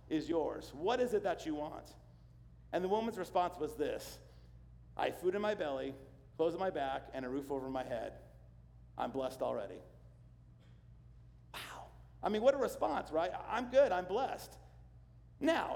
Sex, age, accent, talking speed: male, 50-69, American, 170 wpm